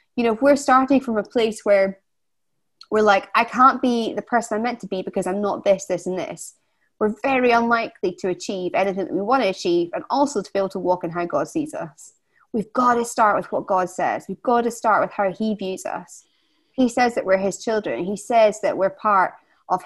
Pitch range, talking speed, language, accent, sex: 195-240 Hz, 240 wpm, English, British, female